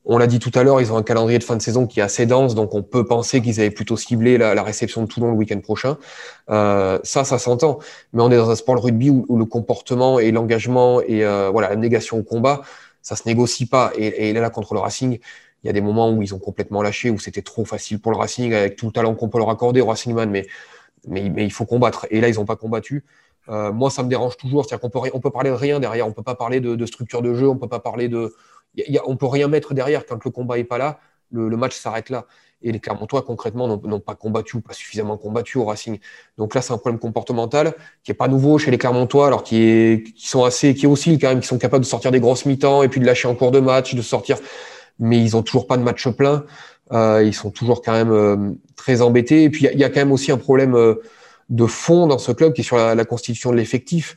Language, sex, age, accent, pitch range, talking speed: French, male, 20-39, French, 110-130 Hz, 285 wpm